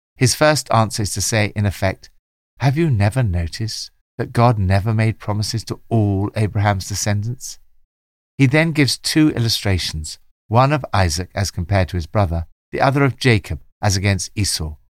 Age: 50-69